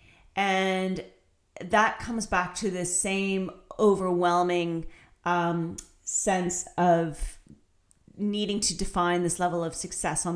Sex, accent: female, American